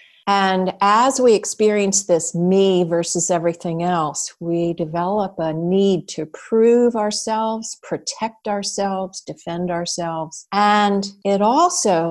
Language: English